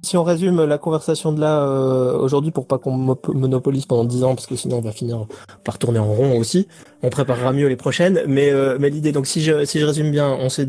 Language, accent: French, French